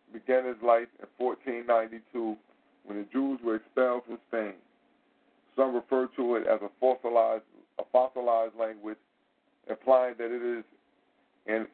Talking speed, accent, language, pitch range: 140 wpm, American, English, 110-125 Hz